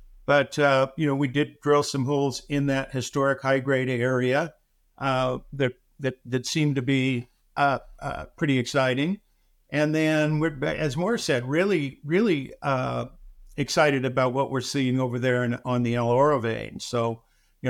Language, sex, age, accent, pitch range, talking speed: English, male, 50-69, American, 125-150 Hz, 165 wpm